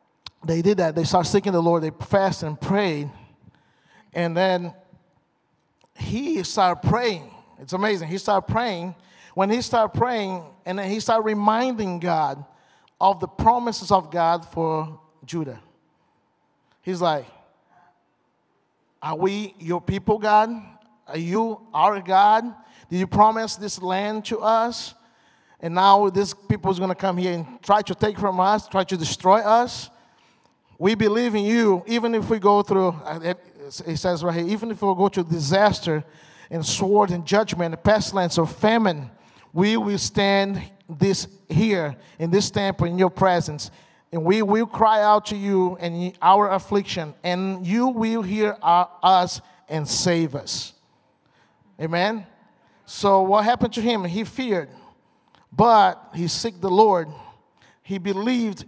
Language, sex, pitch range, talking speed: English, male, 170-210 Hz, 150 wpm